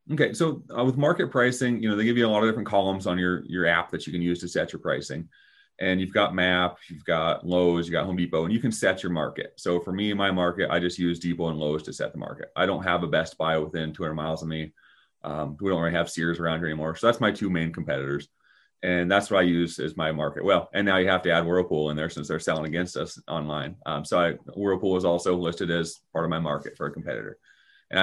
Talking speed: 270 wpm